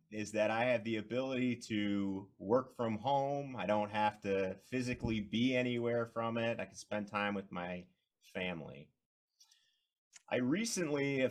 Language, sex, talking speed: English, male, 155 wpm